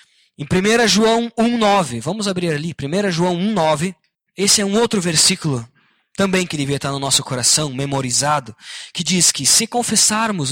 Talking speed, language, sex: 160 wpm, Portuguese, male